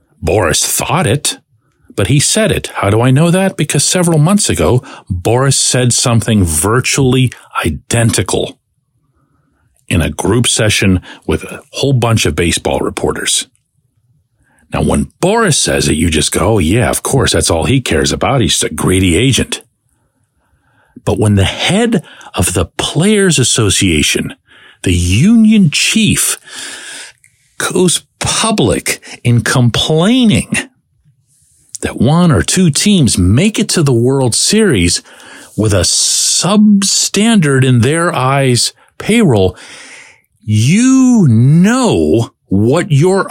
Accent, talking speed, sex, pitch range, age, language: American, 125 wpm, male, 115-185 Hz, 50-69, English